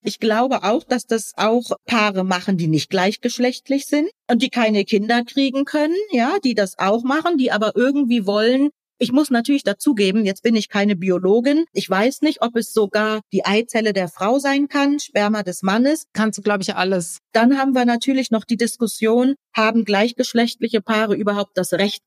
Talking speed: 190 wpm